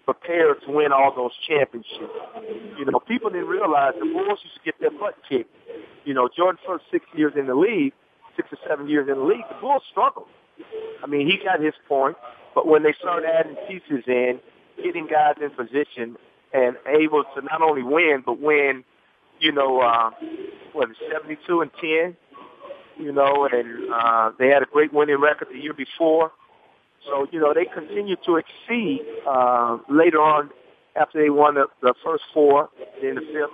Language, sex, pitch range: English, male, 135-180 Hz